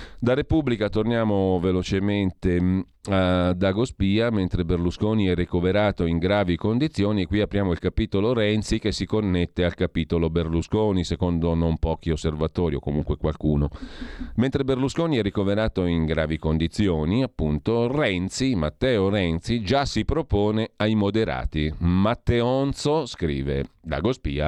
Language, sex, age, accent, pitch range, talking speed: Italian, male, 40-59, native, 85-110 Hz, 125 wpm